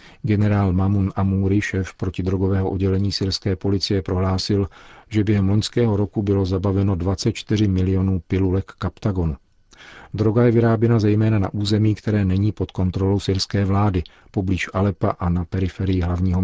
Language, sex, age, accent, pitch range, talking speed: Czech, male, 40-59, native, 90-100 Hz, 140 wpm